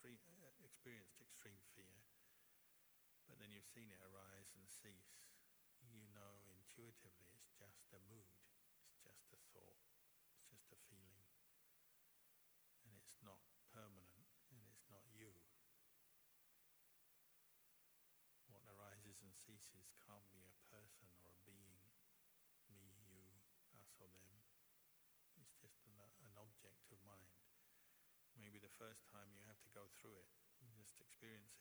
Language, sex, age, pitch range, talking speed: English, male, 60-79, 95-110 Hz, 130 wpm